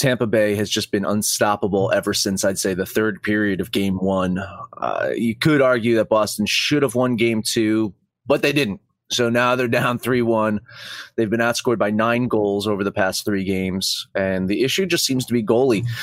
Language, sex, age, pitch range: English, male, 30-49, 105-130 Hz